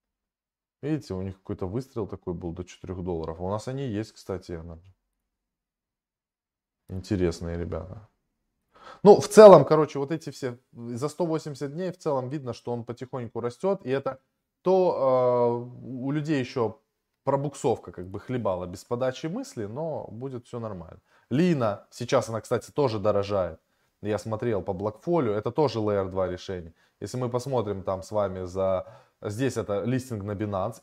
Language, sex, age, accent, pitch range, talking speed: Russian, male, 20-39, native, 100-135 Hz, 155 wpm